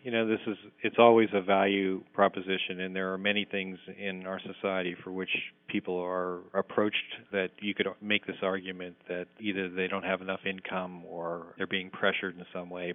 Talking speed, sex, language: 195 wpm, male, English